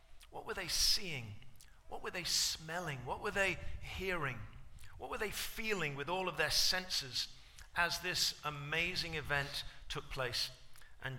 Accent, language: British, English